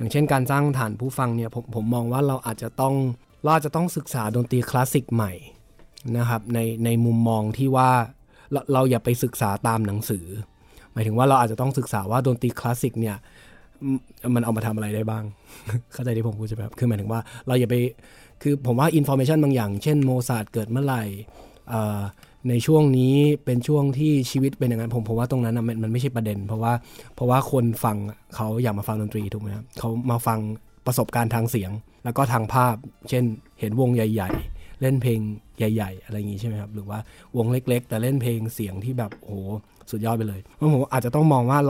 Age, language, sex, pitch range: 20-39, Thai, male, 110-130 Hz